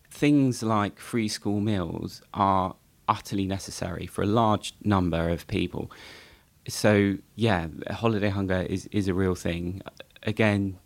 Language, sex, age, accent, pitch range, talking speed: English, male, 20-39, British, 90-105 Hz, 135 wpm